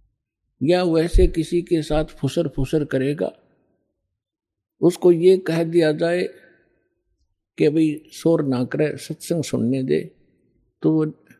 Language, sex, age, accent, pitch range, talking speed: Hindi, male, 60-79, native, 130-175 Hz, 115 wpm